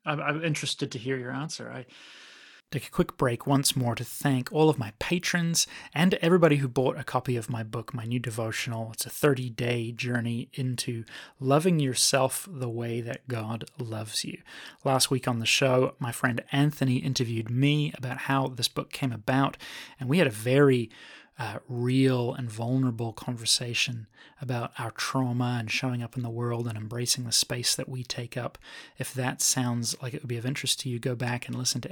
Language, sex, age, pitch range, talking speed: English, male, 20-39, 125-150 Hz, 195 wpm